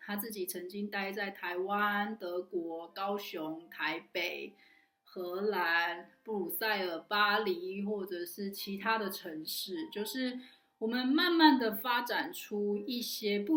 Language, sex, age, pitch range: Chinese, female, 30-49, 185-250 Hz